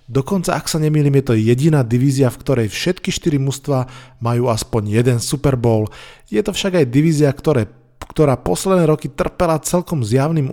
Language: Slovak